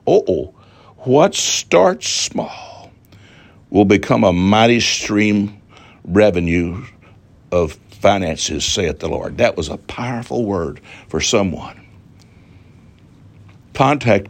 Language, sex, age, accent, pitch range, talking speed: English, male, 60-79, American, 95-120 Hz, 100 wpm